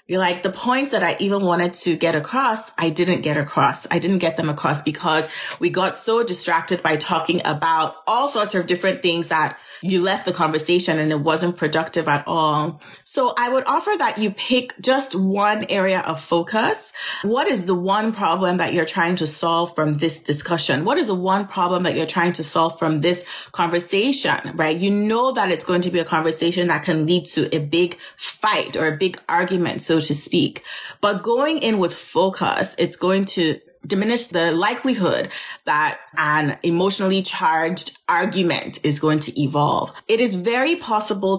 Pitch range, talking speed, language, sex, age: 160-195 Hz, 185 wpm, English, female, 30-49